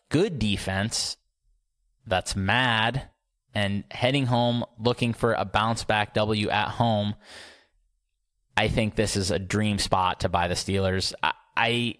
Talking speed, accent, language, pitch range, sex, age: 135 wpm, American, English, 95-115 Hz, male, 20-39